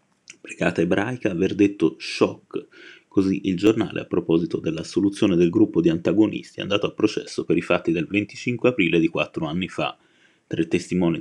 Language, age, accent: Italian, 30-49, native